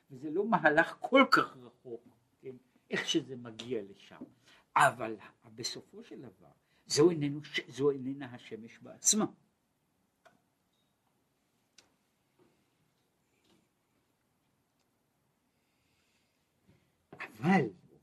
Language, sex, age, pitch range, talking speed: Hebrew, male, 60-79, 120-165 Hz, 65 wpm